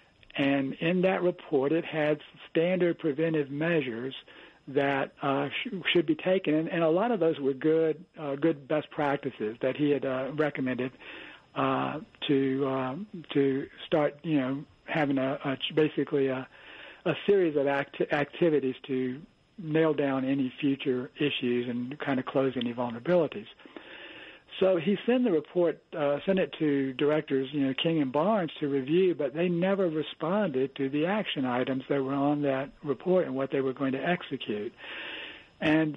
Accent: American